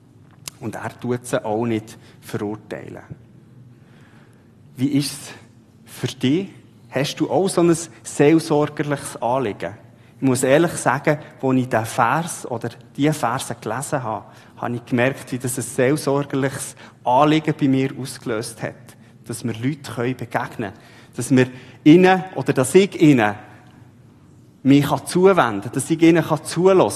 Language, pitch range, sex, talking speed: German, 115-150 Hz, male, 140 wpm